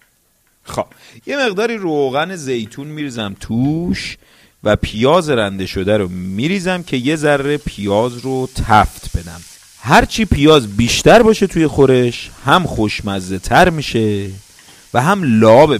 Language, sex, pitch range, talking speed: Persian, male, 100-155 Hz, 125 wpm